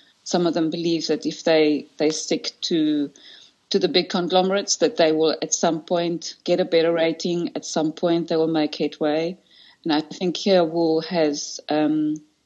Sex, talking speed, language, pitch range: female, 190 wpm, English, 155-185 Hz